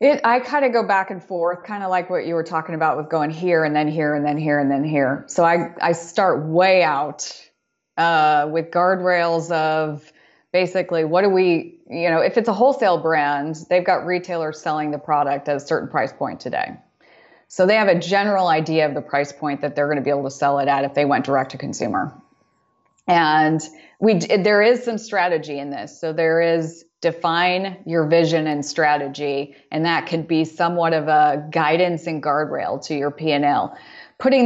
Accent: American